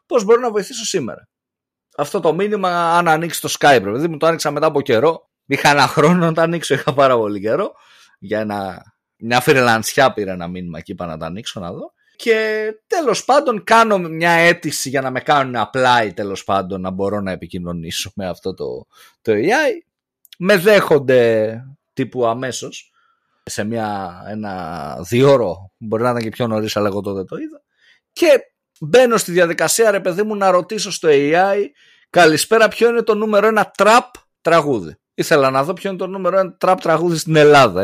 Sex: male